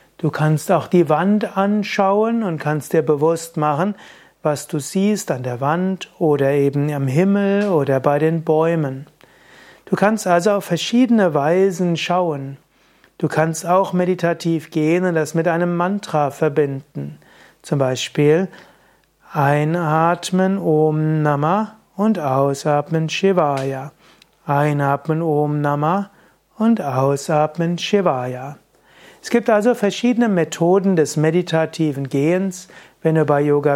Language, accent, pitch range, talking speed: German, German, 150-190 Hz, 125 wpm